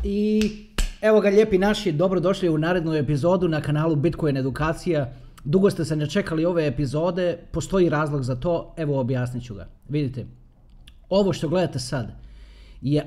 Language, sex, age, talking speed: Croatian, male, 40-59, 145 wpm